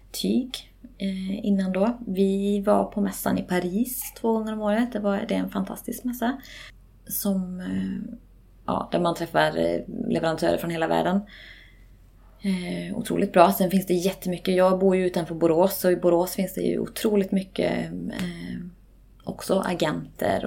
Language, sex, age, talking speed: Swedish, female, 20-39, 160 wpm